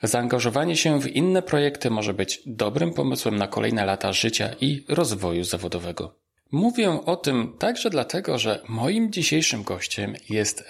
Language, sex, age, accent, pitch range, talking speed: Polish, male, 40-59, native, 105-140 Hz, 145 wpm